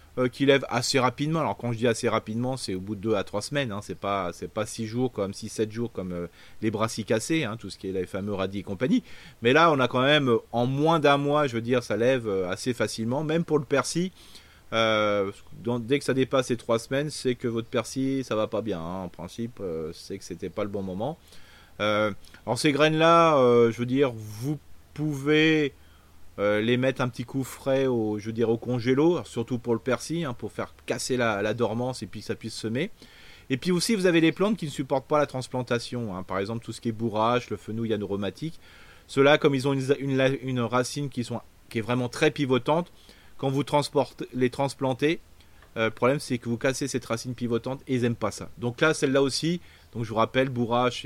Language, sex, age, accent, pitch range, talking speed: French, male, 30-49, French, 105-135 Hz, 235 wpm